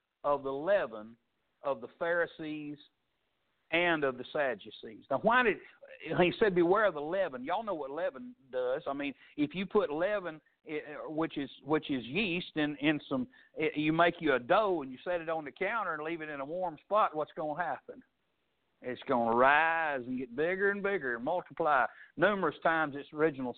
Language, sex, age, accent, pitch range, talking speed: English, male, 60-79, American, 155-210 Hz, 200 wpm